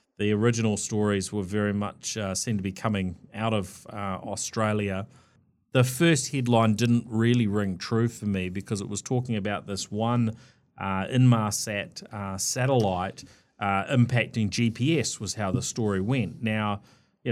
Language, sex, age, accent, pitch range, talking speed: English, male, 30-49, Australian, 100-115 Hz, 155 wpm